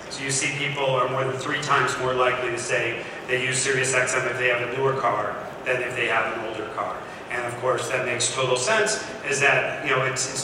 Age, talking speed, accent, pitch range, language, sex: 40-59, 245 wpm, American, 130-170 Hz, English, male